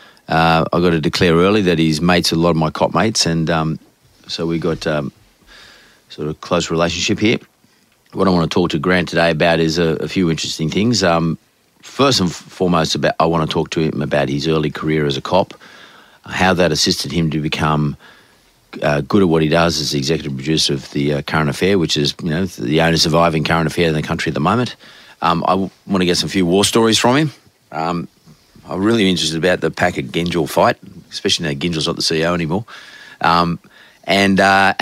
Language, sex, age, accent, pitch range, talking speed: English, male, 40-59, Australian, 75-90 Hz, 220 wpm